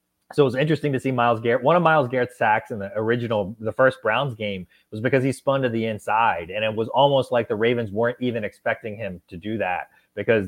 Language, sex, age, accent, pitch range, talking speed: English, male, 20-39, American, 105-130 Hz, 240 wpm